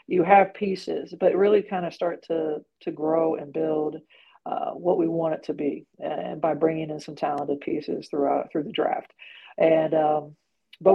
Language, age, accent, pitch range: English, 50-69, American, 165-195 Hz